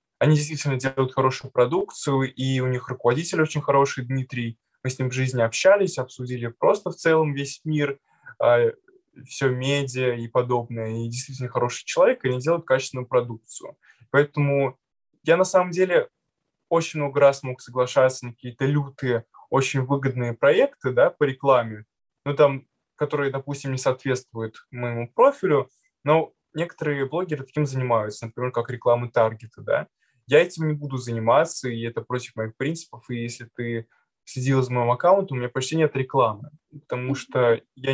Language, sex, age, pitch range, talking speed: Russian, male, 20-39, 120-145 Hz, 155 wpm